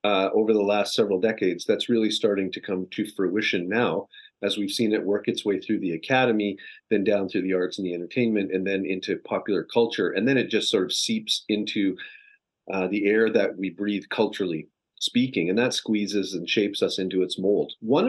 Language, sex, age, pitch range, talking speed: English, male, 40-59, 100-130 Hz, 210 wpm